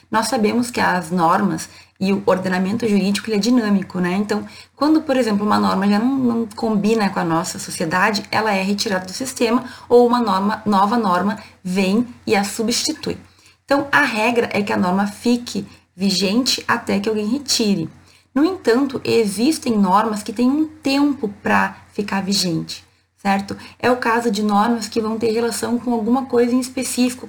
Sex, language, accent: female, Portuguese, Brazilian